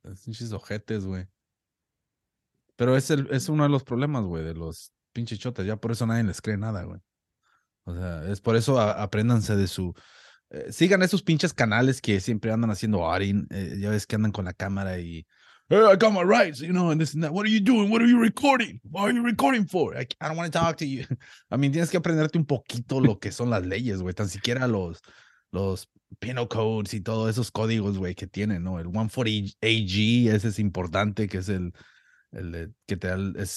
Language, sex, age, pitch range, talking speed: Spanish, male, 30-49, 95-125 Hz, 230 wpm